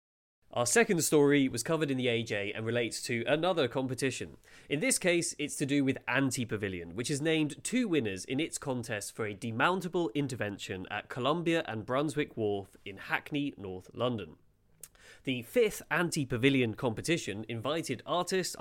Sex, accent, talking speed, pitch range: male, British, 155 wpm, 110-155 Hz